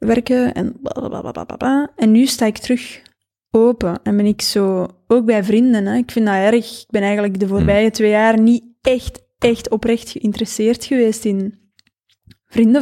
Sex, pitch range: female, 205-230 Hz